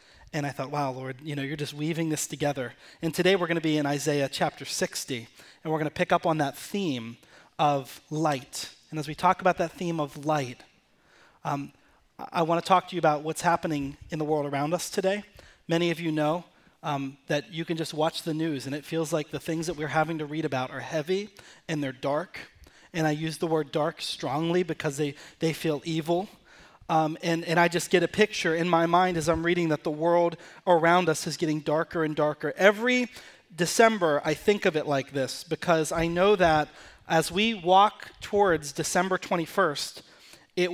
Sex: male